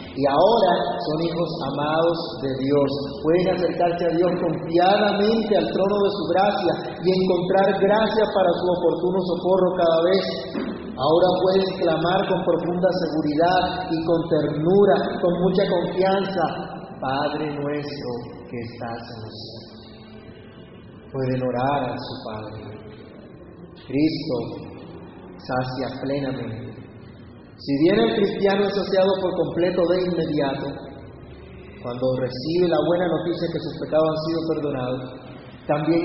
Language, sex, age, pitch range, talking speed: Spanish, male, 30-49, 135-185 Hz, 125 wpm